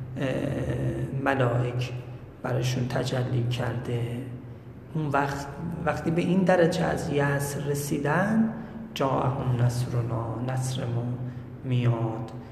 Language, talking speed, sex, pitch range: Persian, 80 wpm, male, 125-140 Hz